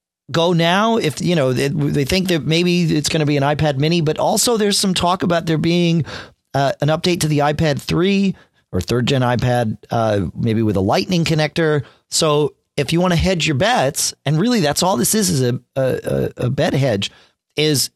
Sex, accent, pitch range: male, American, 110-155 Hz